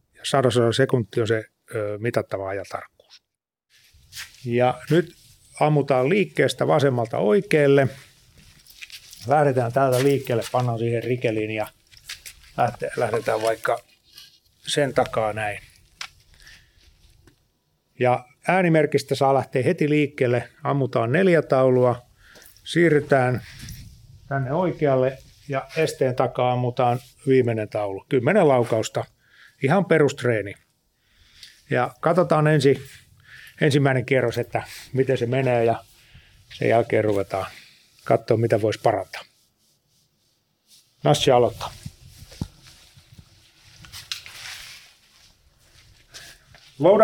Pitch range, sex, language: 115-145 Hz, male, Finnish